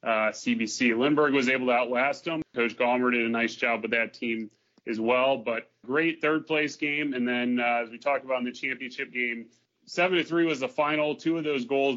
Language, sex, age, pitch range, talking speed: English, male, 30-49, 120-140 Hz, 215 wpm